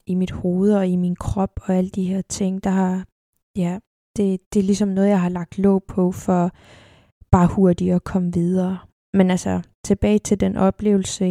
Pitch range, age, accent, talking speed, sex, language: 180-200 Hz, 20-39, native, 195 wpm, female, Danish